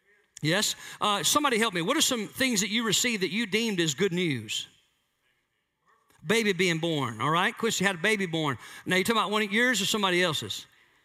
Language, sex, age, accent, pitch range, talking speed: English, male, 50-69, American, 155-225 Hz, 210 wpm